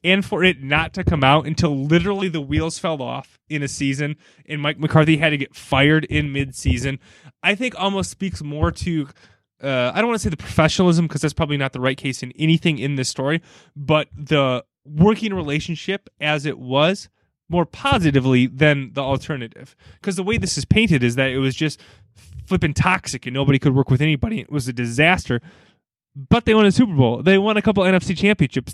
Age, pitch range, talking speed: 20-39, 130-170 Hz, 205 wpm